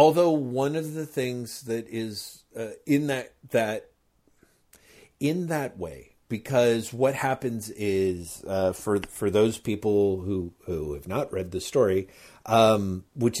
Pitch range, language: 95-125 Hz, English